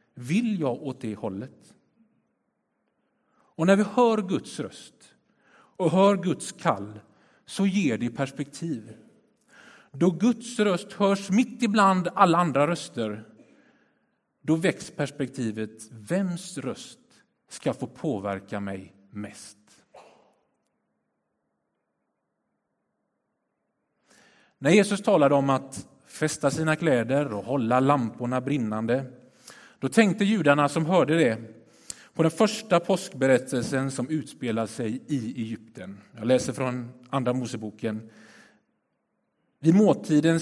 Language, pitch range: Swedish, 120-195 Hz